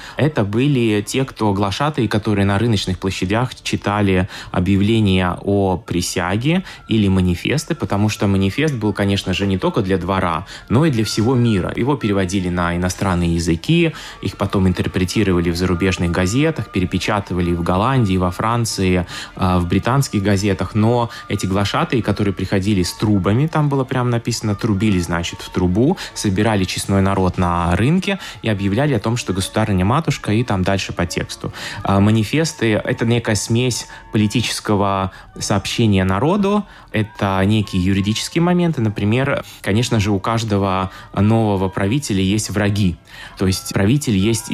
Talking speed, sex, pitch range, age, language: 145 wpm, male, 95-115 Hz, 20-39, Russian